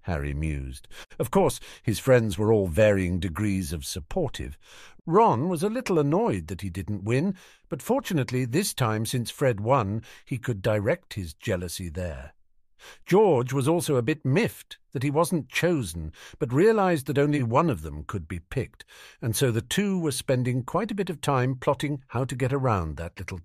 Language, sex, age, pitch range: English, male, 50-69, 90-135 Hz